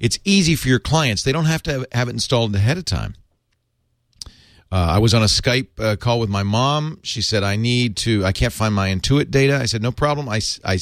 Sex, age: male, 40-59